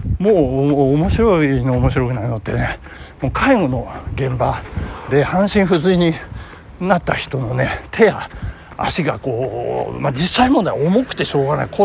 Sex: male